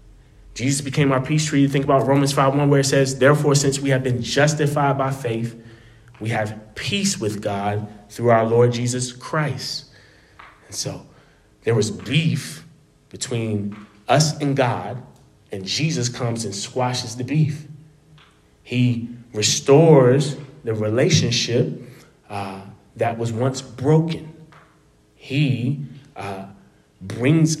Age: 30-49